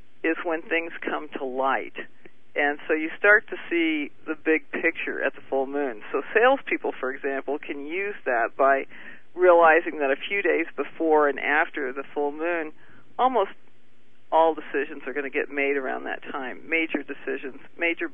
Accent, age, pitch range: American, 50-69, 135-165 Hz